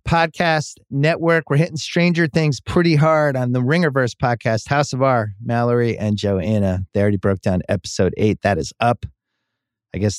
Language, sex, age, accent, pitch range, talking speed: English, male, 30-49, American, 95-125 Hz, 170 wpm